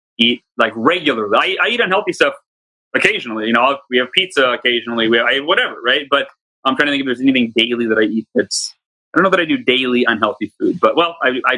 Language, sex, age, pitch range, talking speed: English, male, 30-49, 145-225 Hz, 240 wpm